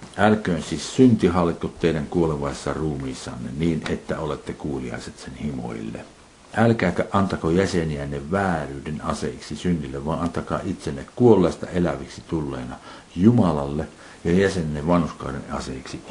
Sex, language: male, Finnish